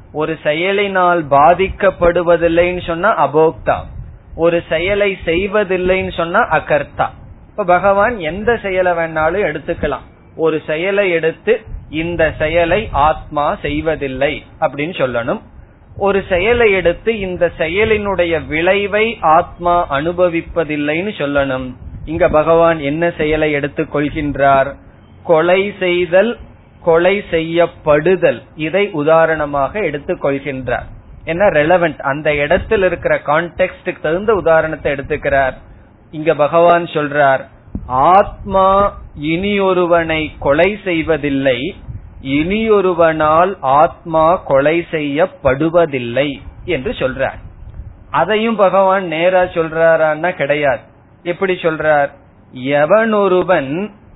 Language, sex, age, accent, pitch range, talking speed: Tamil, male, 20-39, native, 145-185 Hz, 85 wpm